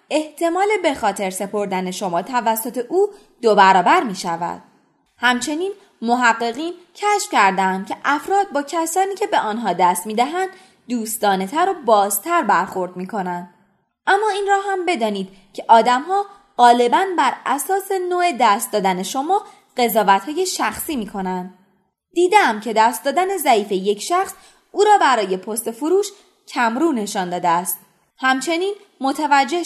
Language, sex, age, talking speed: Persian, female, 20-39, 140 wpm